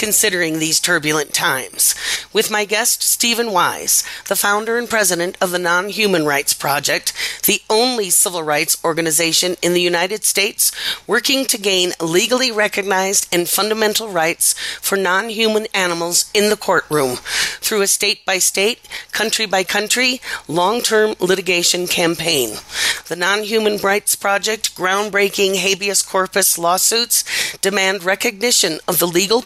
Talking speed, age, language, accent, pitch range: 140 wpm, 40-59, English, American, 175-215 Hz